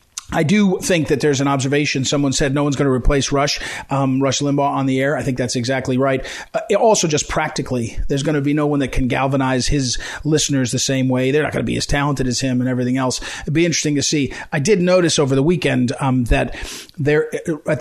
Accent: American